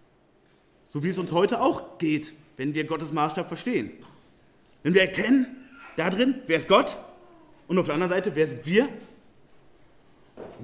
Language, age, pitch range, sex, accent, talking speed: German, 40-59, 165-220 Hz, male, German, 160 wpm